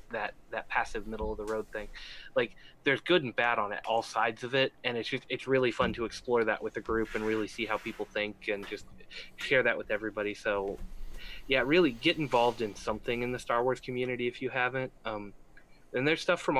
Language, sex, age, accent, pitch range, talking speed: English, male, 20-39, American, 105-120 Hz, 230 wpm